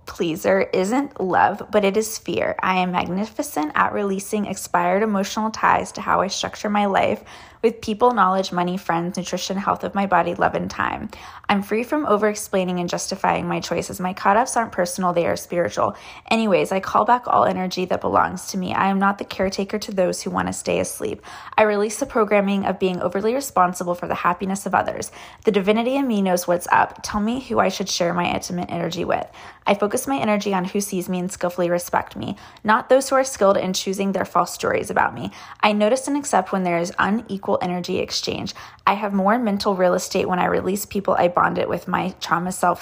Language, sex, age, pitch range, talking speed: English, female, 20-39, 180-215 Hz, 215 wpm